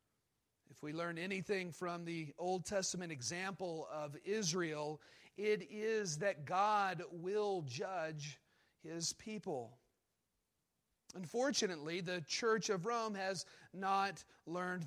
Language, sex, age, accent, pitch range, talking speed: English, male, 40-59, American, 160-200 Hz, 110 wpm